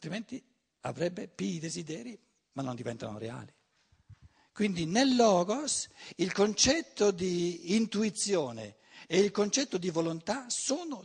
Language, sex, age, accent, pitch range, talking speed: Italian, male, 60-79, native, 150-210 Hz, 120 wpm